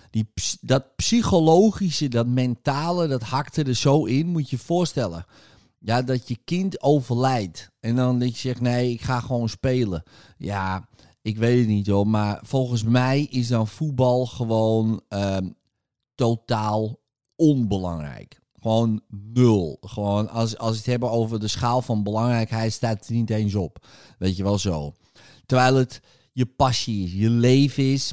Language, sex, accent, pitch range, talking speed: Dutch, male, Dutch, 110-145 Hz, 160 wpm